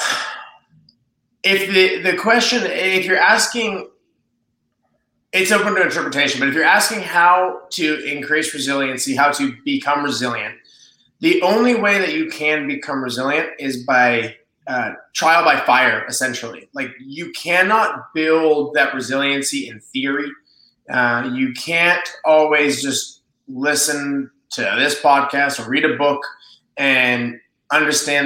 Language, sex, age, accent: English, male, 20-39, American